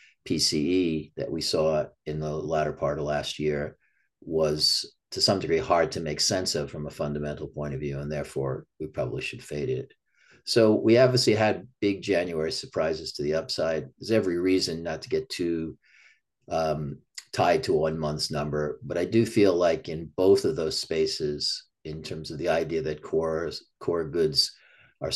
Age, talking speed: 40-59, 180 wpm